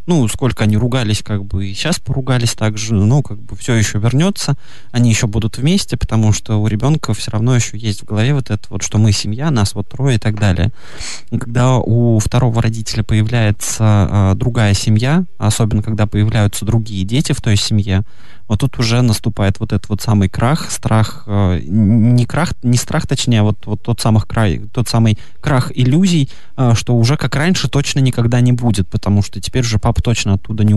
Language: Russian